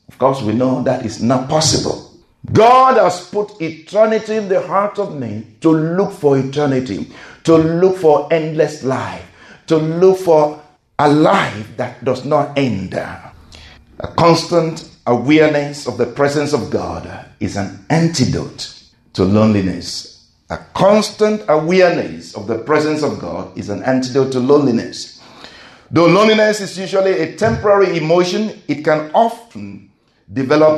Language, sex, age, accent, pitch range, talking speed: English, male, 50-69, Nigerian, 125-180 Hz, 140 wpm